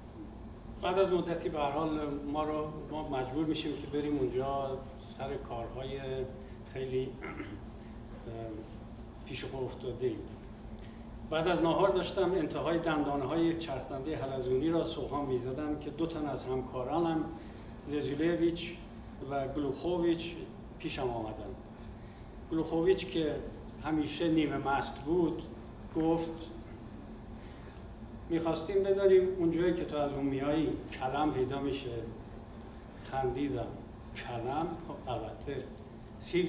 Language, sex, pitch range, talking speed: Persian, male, 115-165 Hz, 105 wpm